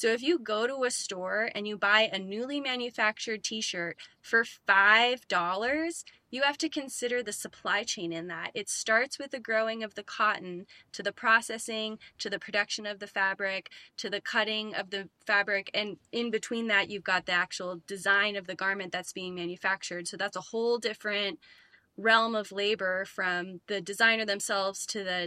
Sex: female